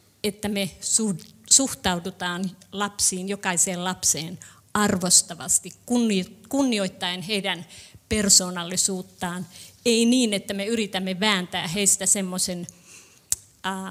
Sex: female